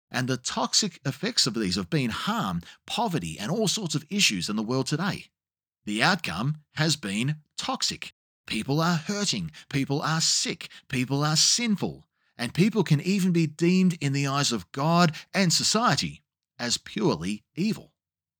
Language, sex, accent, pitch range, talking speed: English, male, Australian, 130-185 Hz, 160 wpm